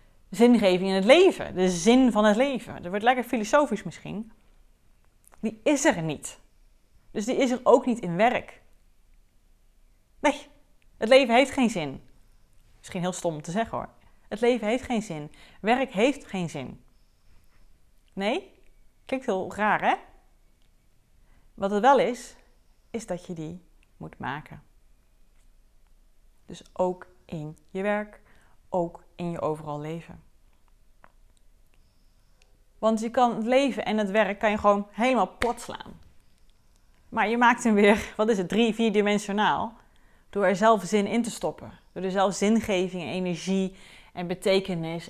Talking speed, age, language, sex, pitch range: 150 wpm, 30-49, Dutch, female, 170-225 Hz